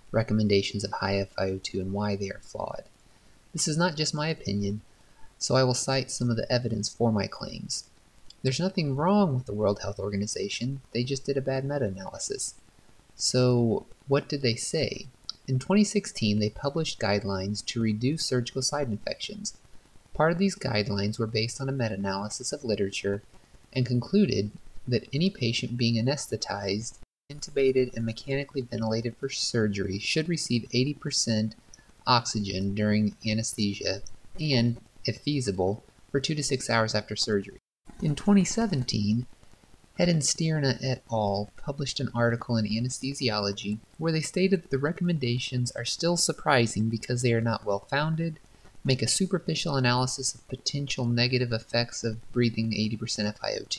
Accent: American